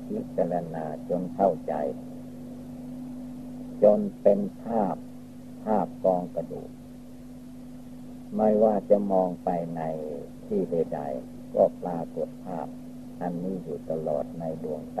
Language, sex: Thai, male